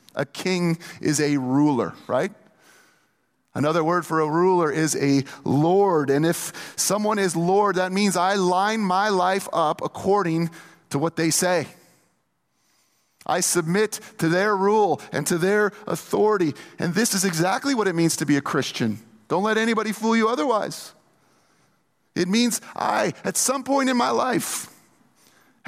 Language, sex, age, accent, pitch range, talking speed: English, male, 30-49, American, 155-195 Hz, 155 wpm